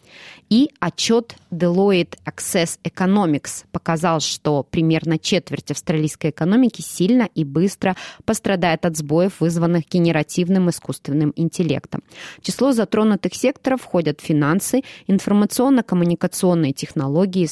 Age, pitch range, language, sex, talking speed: 20-39, 160-200 Hz, Russian, female, 95 wpm